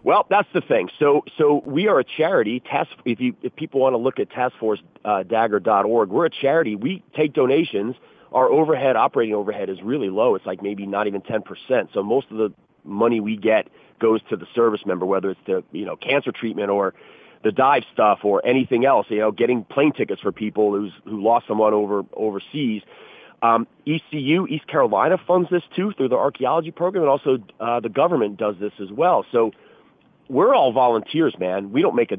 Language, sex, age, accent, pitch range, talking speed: English, male, 40-59, American, 105-135 Hz, 205 wpm